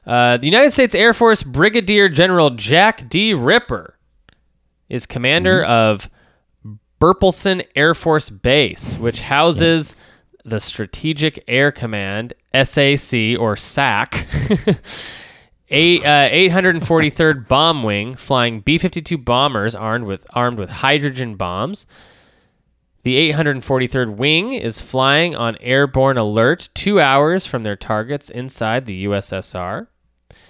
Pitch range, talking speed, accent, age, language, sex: 110-160 Hz, 105 wpm, American, 20-39, English, male